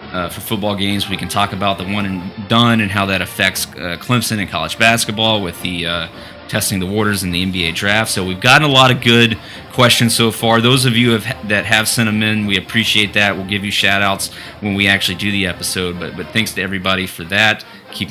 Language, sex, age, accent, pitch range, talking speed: English, male, 30-49, American, 90-110 Hz, 235 wpm